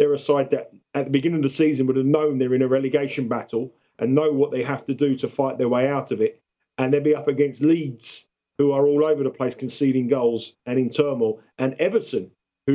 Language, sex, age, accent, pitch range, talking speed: English, male, 50-69, British, 135-165 Hz, 245 wpm